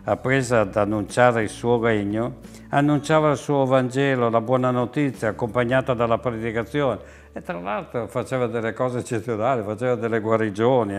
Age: 60-79